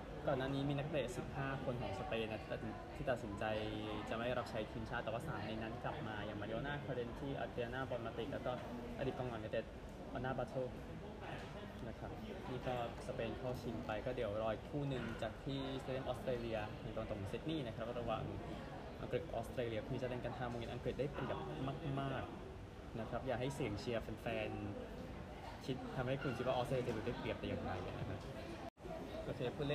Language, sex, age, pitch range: Thai, male, 20-39, 110-130 Hz